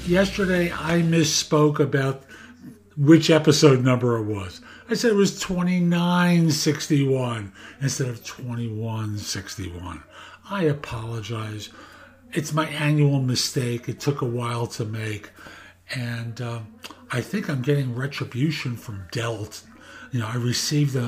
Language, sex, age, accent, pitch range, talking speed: English, male, 50-69, American, 120-160 Hz, 120 wpm